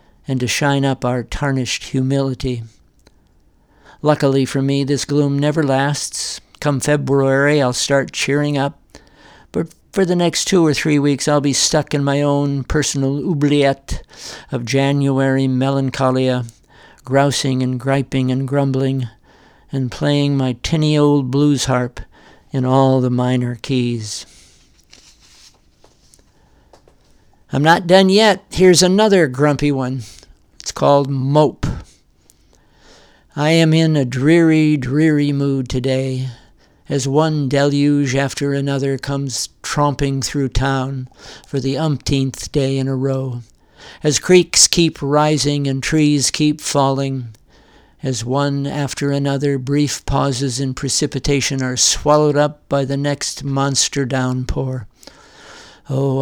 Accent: American